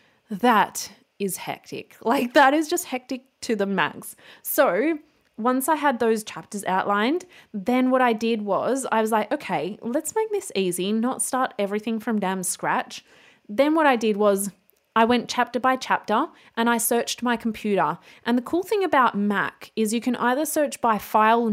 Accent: Australian